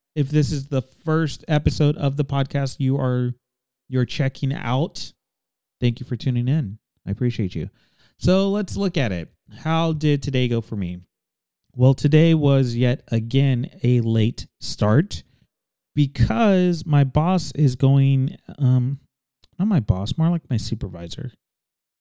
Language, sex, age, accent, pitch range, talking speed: English, male, 30-49, American, 120-145 Hz, 145 wpm